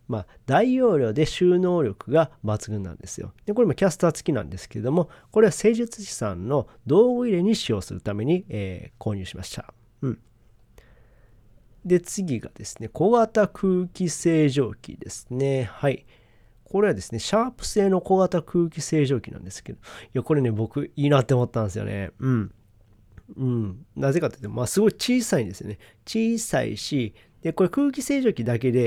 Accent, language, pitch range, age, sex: native, Japanese, 110-180 Hz, 40-59, male